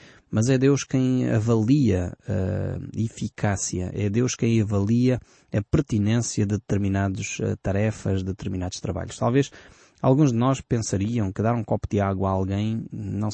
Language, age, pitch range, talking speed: Portuguese, 20-39, 100-125 Hz, 150 wpm